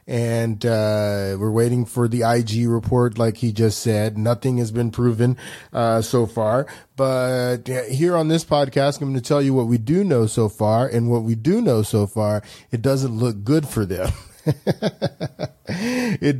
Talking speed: 180 wpm